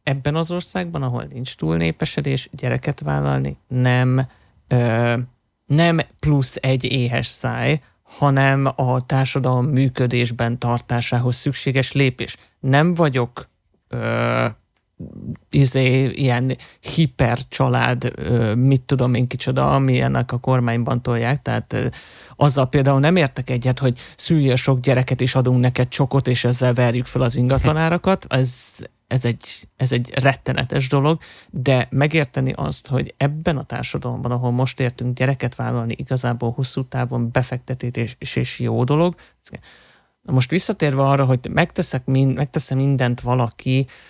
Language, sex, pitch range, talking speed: Hungarian, male, 120-140 Hz, 120 wpm